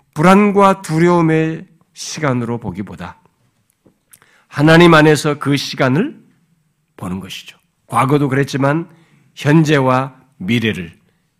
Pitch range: 120-170 Hz